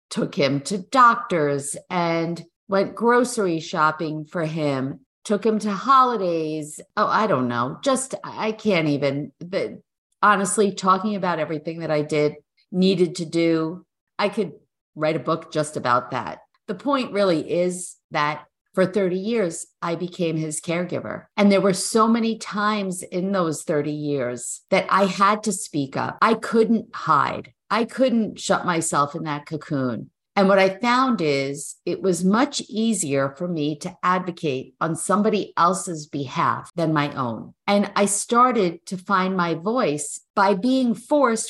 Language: English